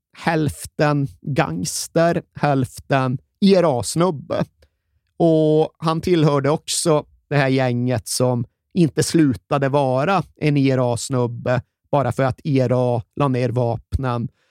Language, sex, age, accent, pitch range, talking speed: Swedish, male, 30-49, native, 125-145 Hz, 100 wpm